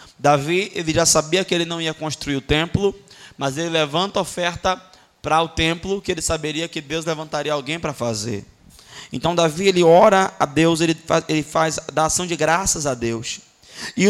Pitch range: 160-245 Hz